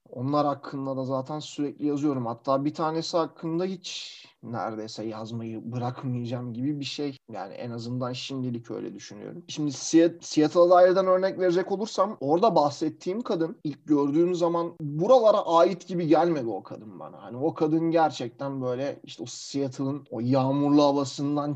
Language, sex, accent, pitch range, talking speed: Turkish, male, native, 130-160 Hz, 145 wpm